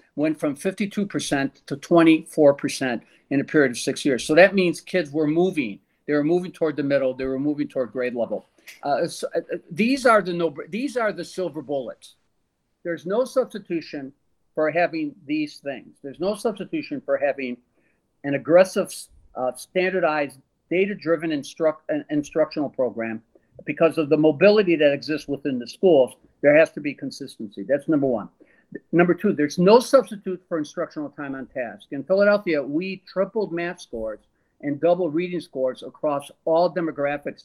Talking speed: 155 wpm